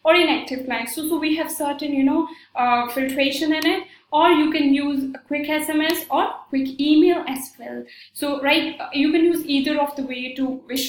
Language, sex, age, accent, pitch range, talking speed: English, female, 10-29, Indian, 255-310 Hz, 205 wpm